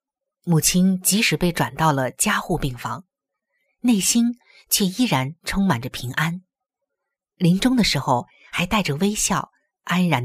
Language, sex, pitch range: Chinese, female, 150-225 Hz